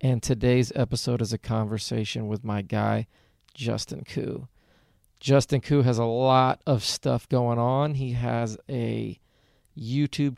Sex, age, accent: male, 40-59, American